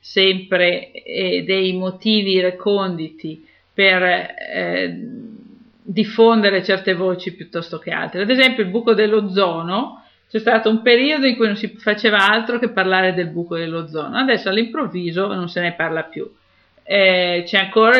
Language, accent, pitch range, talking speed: Italian, native, 175-215 Hz, 145 wpm